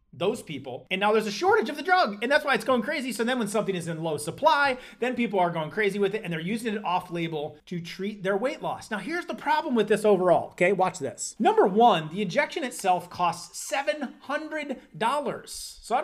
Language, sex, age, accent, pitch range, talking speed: English, male, 30-49, American, 175-240 Hz, 230 wpm